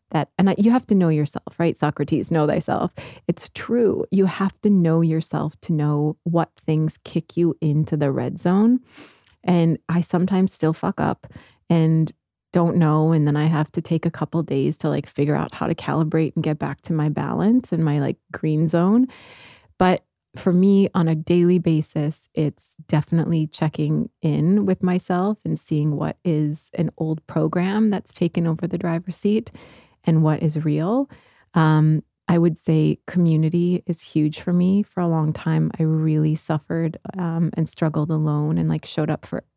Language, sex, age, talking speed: English, female, 20-39, 180 wpm